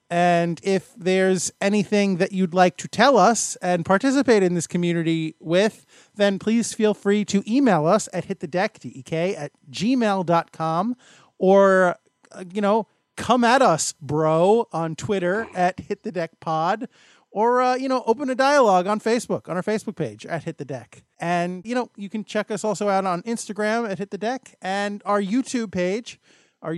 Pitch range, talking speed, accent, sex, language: 180-220 Hz, 175 wpm, American, male, English